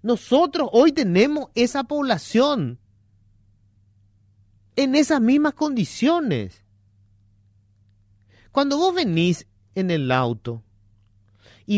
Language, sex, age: Spanish, male, 40-59